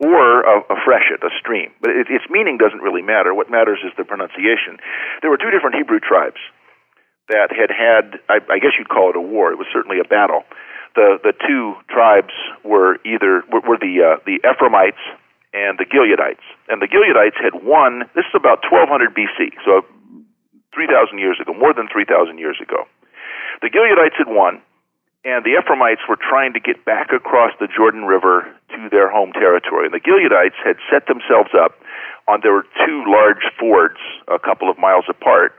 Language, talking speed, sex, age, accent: English, 190 wpm, male, 50-69, American